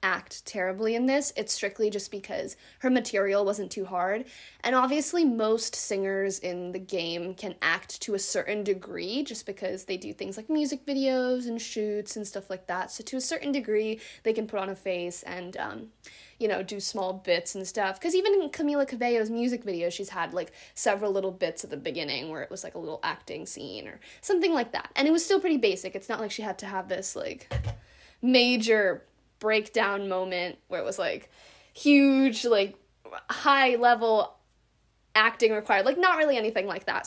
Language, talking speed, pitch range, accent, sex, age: English, 195 wpm, 200-275 Hz, American, female, 20-39